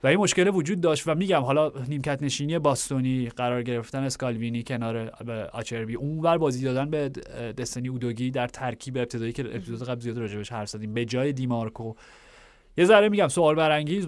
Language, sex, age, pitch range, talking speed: Persian, male, 30-49, 120-145 Hz, 165 wpm